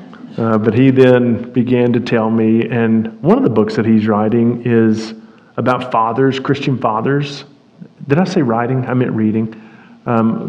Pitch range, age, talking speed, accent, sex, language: 110-135 Hz, 40-59, 165 wpm, American, male, English